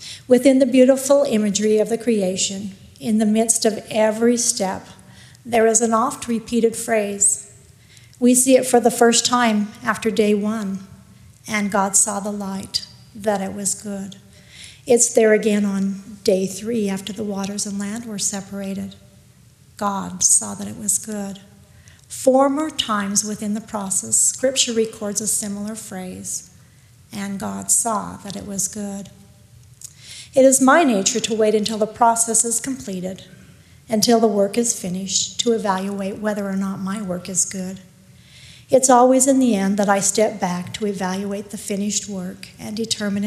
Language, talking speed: English, 160 wpm